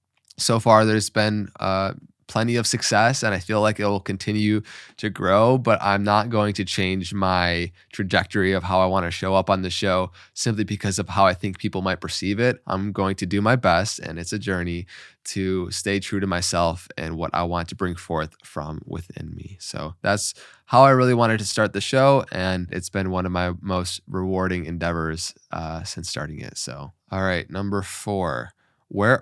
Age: 20-39